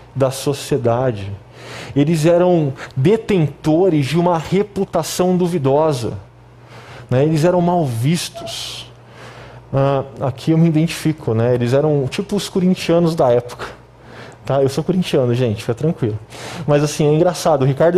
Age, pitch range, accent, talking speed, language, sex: 20-39, 130-180 Hz, Brazilian, 135 wpm, Portuguese, male